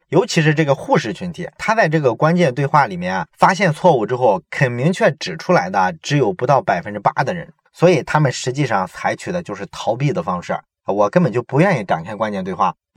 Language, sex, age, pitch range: Chinese, male, 20-39, 135-180 Hz